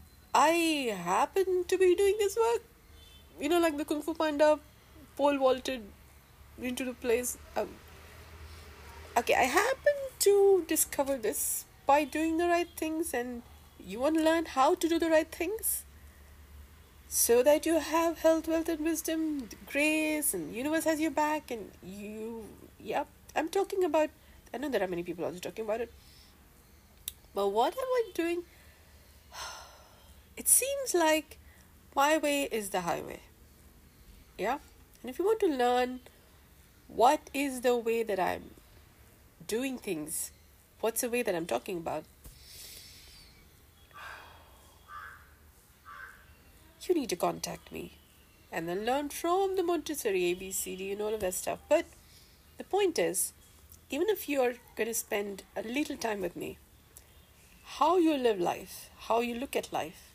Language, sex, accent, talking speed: English, female, Indian, 150 wpm